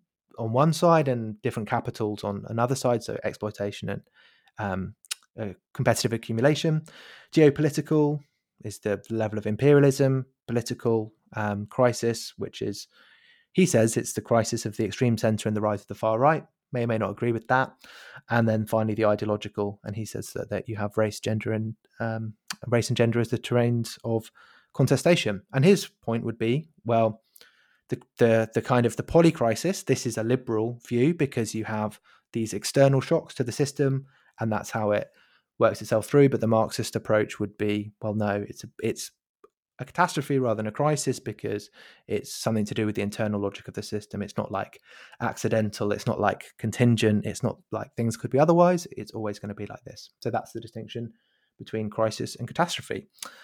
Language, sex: English, male